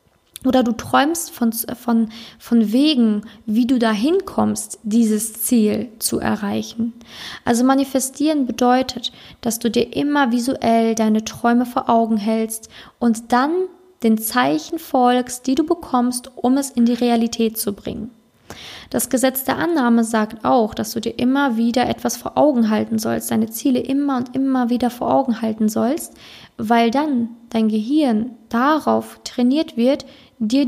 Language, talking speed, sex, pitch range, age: German, 150 wpm, female, 225-260 Hz, 20-39